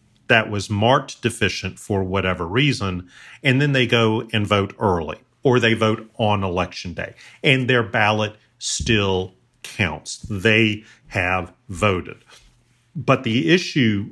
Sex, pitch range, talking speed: male, 110-140 Hz, 130 wpm